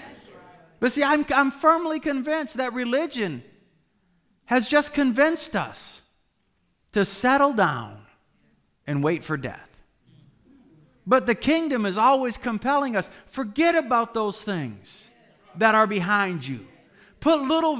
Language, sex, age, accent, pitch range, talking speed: English, male, 40-59, American, 180-265 Hz, 120 wpm